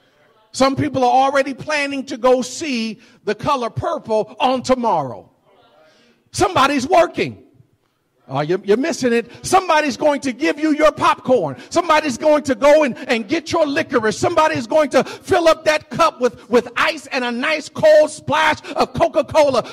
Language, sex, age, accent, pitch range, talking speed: English, male, 50-69, American, 230-295 Hz, 160 wpm